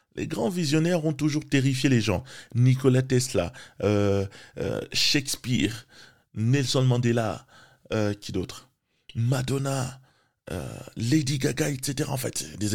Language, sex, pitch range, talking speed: French, male, 110-145 Hz, 120 wpm